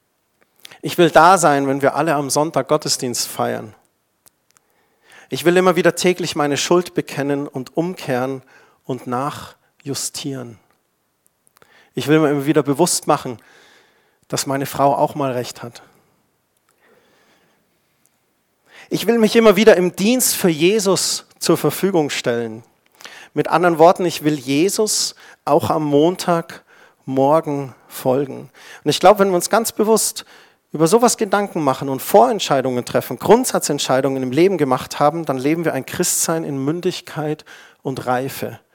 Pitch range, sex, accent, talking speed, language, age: 140-185 Hz, male, German, 140 wpm, German, 40-59